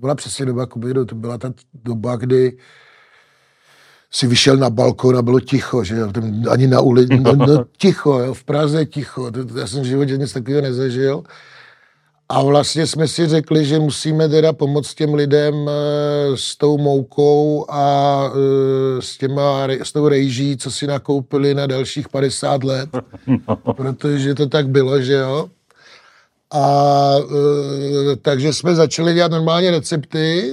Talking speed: 145 wpm